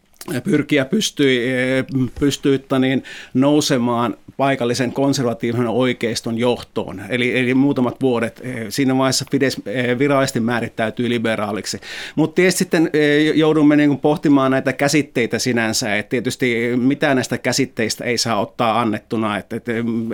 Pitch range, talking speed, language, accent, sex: 120-145 Hz, 110 wpm, Finnish, native, male